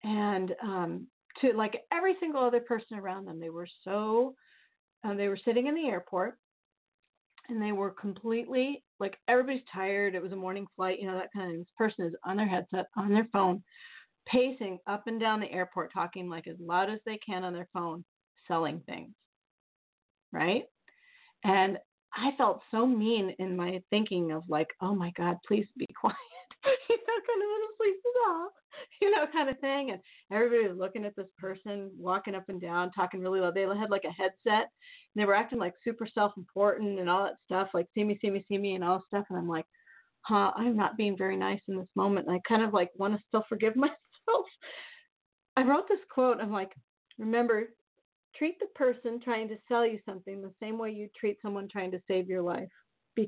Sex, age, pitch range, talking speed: female, 40-59, 185-235 Hz, 205 wpm